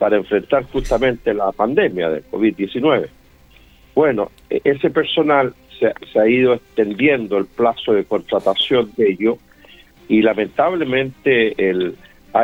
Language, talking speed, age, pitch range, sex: Spanish, 110 wpm, 50-69, 100-125 Hz, male